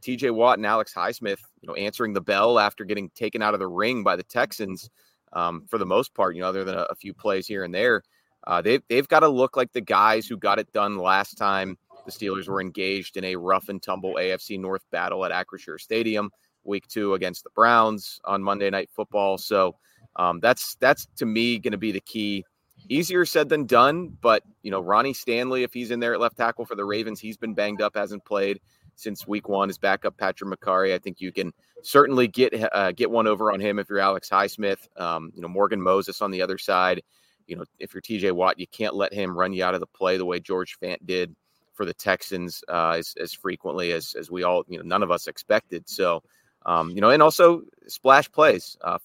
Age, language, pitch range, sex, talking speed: 30-49, English, 95-110 Hz, male, 235 wpm